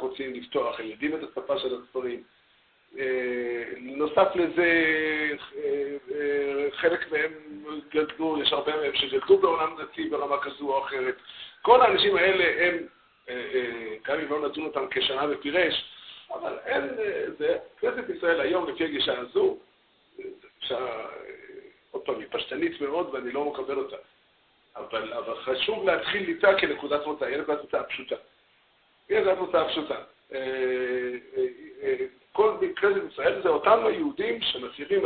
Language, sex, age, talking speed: Hebrew, male, 50-69, 130 wpm